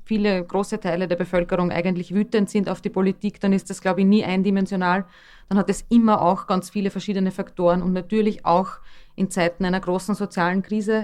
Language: German